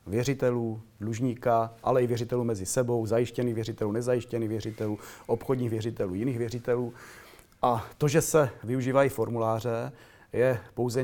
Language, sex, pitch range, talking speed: Czech, male, 115-130 Hz, 125 wpm